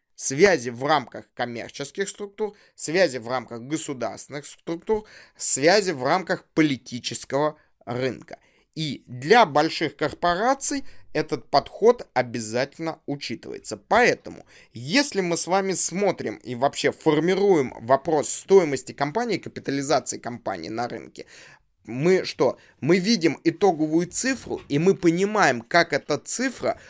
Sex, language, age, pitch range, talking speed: male, Russian, 20-39, 125-175 Hz, 115 wpm